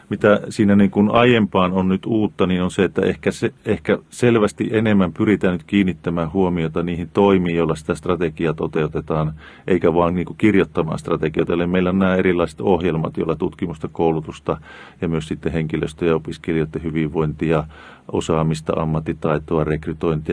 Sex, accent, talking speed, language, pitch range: male, native, 155 wpm, Finnish, 80-95 Hz